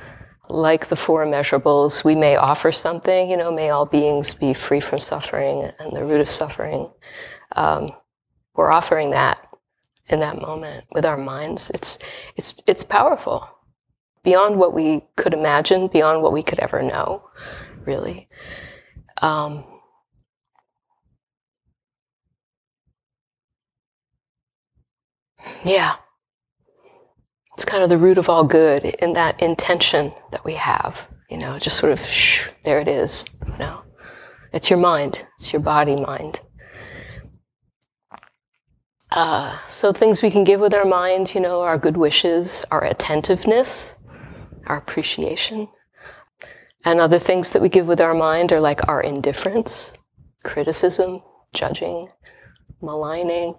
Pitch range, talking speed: 150-185 Hz, 130 wpm